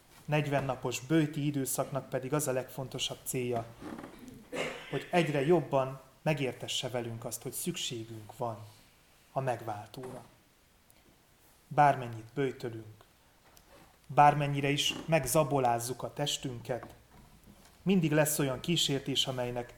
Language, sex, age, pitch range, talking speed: Hungarian, male, 30-49, 120-145 Hz, 95 wpm